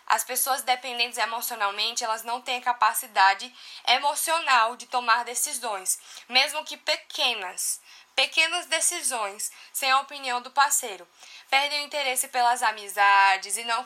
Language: Portuguese